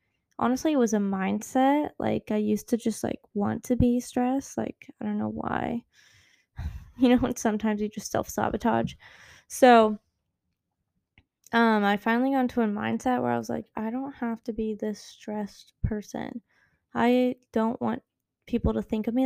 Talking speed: 170 wpm